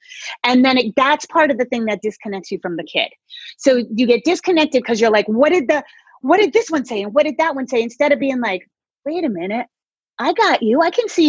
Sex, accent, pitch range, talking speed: female, American, 200-280 Hz, 250 wpm